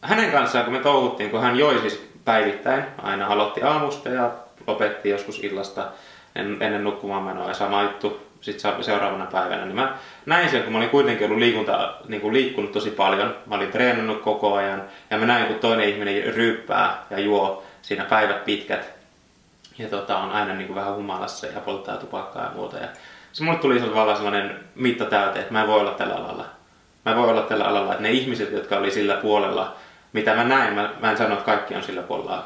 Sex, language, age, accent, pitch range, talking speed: male, Finnish, 20-39, native, 100-115 Hz, 200 wpm